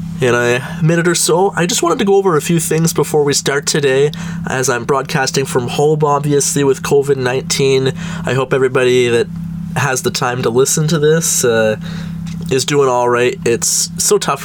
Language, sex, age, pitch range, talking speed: English, male, 20-39, 125-170 Hz, 190 wpm